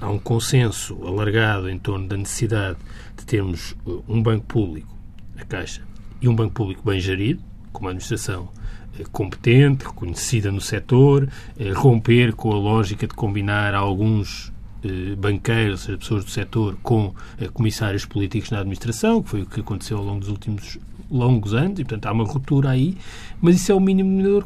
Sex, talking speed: male, 170 wpm